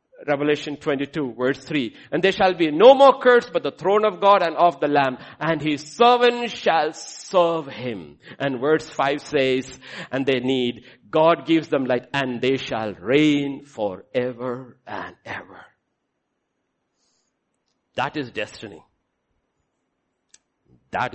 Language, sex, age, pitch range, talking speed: English, male, 50-69, 115-165 Hz, 135 wpm